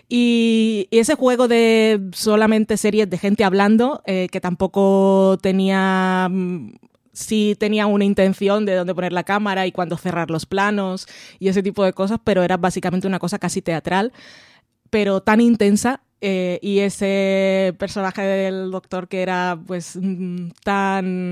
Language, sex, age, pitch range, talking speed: Spanish, female, 20-39, 180-205 Hz, 145 wpm